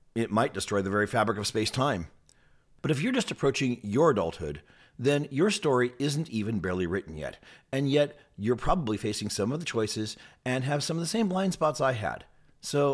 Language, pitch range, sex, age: English, 105-150 Hz, male, 40-59